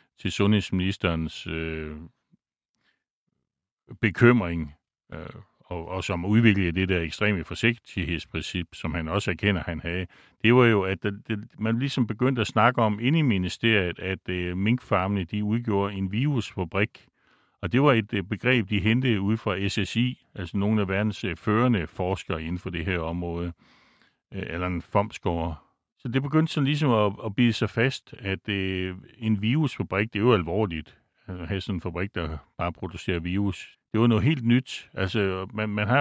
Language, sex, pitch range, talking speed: Danish, male, 90-115 Hz, 170 wpm